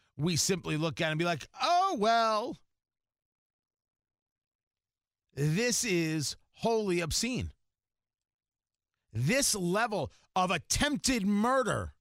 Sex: male